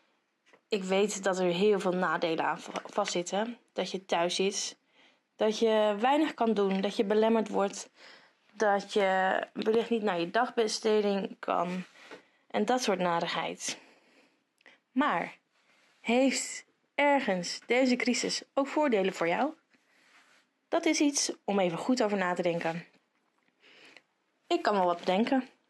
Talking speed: 135 wpm